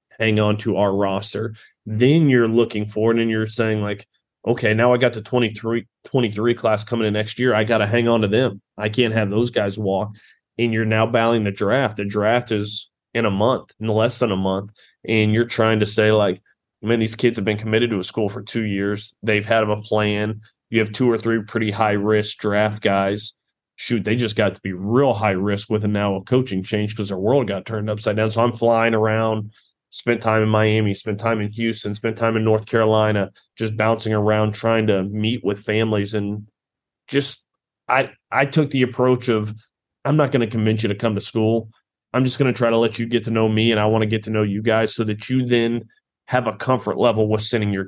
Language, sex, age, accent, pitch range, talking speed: English, male, 20-39, American, 105-115 Hz, 230 wpm